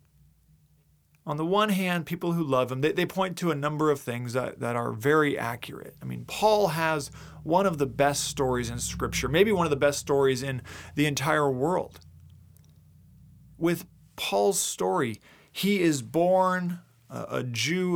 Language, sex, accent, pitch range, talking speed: English, male, American, 130-165 Hz, 165 wpm